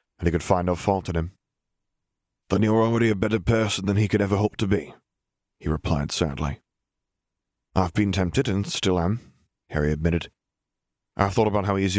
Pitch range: 85-100 Hz